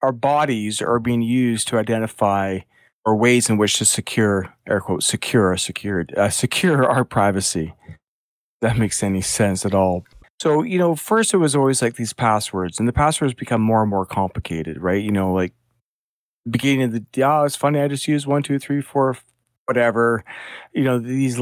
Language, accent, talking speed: English, American, 190 wpm